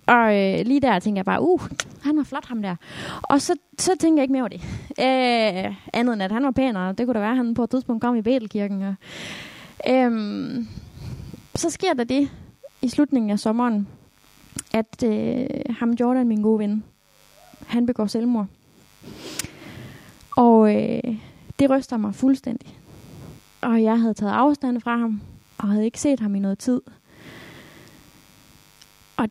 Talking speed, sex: 170 wpm, female